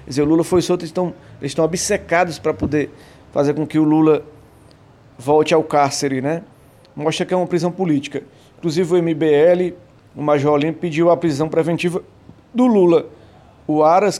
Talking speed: 170 wpm